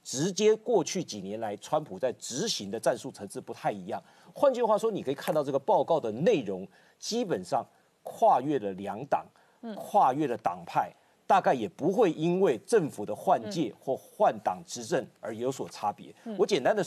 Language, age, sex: Chinese, 50-69, male